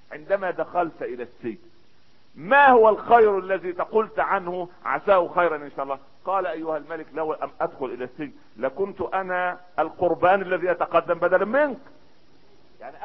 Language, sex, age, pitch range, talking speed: Arabic, male, 50-69, 155-205 Hz, 145 wpm